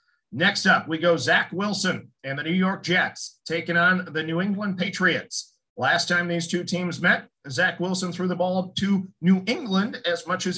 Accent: American